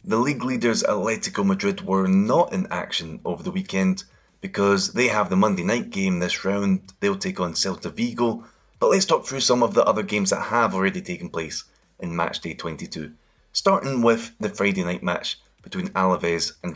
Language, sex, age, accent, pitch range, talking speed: English, male, 20-39, British, 95-130 Hz, 195 wpm